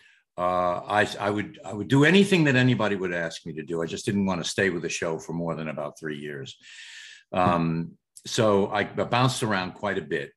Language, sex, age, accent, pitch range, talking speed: English, male, 60-79, American, 90-125 Hz, 220 wpm